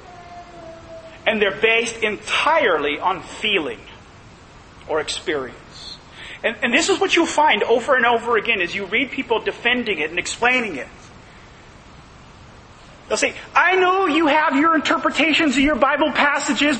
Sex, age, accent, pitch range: male, 30-49, American, 210-310 Hz